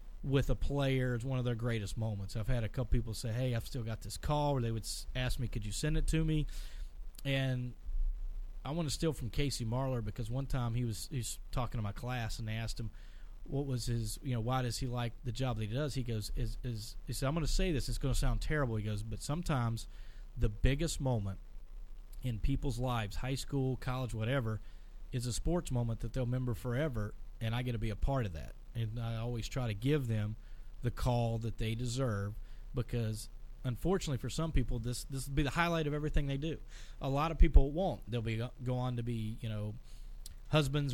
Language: English